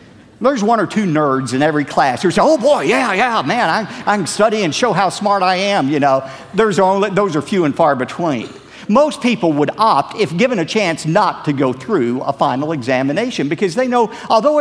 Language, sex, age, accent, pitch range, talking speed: English, male, 50-69, American, 125-210 Hz, 220 wpm